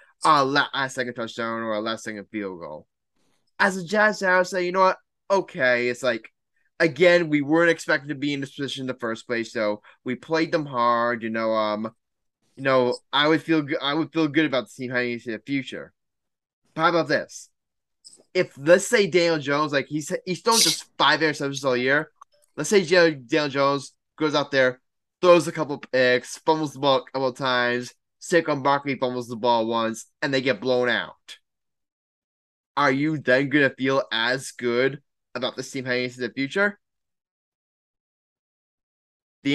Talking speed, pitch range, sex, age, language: 185 wpm, 125-165 Hz, male, 10-29, English